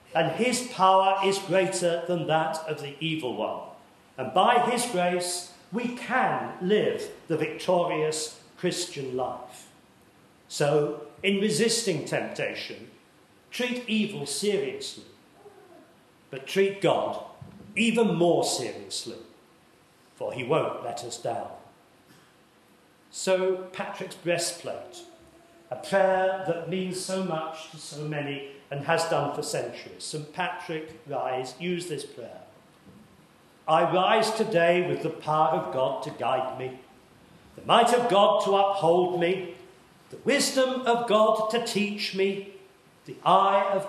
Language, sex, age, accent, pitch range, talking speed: English, male, 40-59, British, 165-205 Hz, 125 wpm